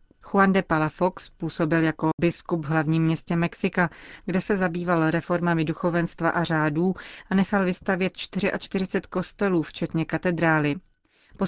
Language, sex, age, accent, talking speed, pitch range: Czech, female, 30-49, native, 130 wpm, 160-180 Hz